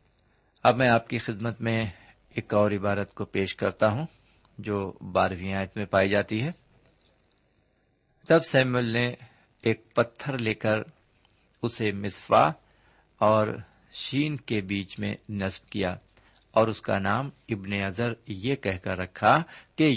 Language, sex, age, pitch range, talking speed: Urdu, male, 50-69, 100-125 Hz, 140 wpm